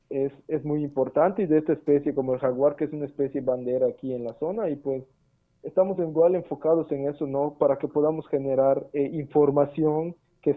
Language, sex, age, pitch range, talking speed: Spanish, male, 40-59, 135-155 Hz, 200 wpm